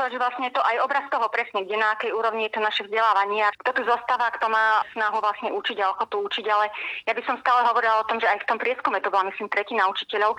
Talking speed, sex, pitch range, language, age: 265 wpm, female, 210-240 Hz, Slovak, 30-49